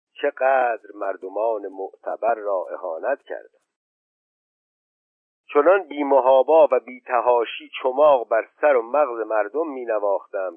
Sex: male